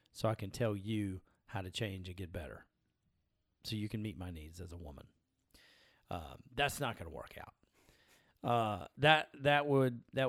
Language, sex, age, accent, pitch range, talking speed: English, male, 40-59, American, 105-130 Hz, 180 wpm